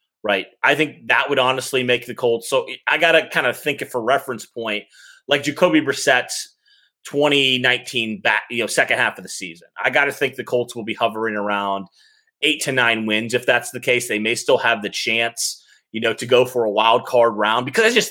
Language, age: English, 30-49